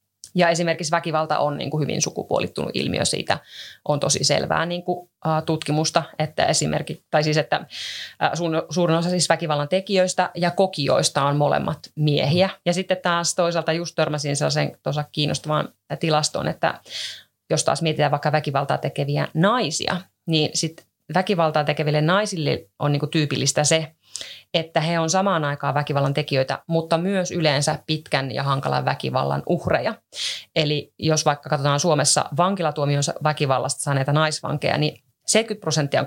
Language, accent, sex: Finnish, native, female